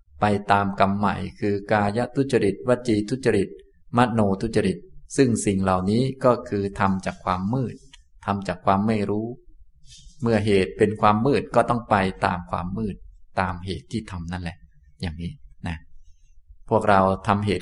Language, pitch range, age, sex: Thai, 90-110 Hz, 20-39, male